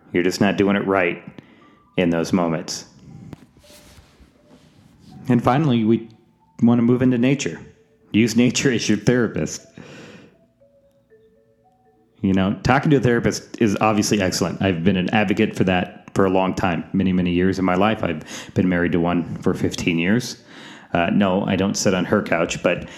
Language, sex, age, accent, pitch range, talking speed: English, male, 30-49, American, 95-120 Hz, 165 wpm